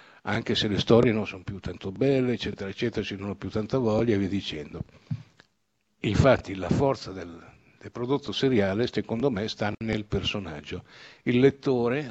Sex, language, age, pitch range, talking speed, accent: male, Italian, 60-79, 105-130 Hz, 165 wpm, native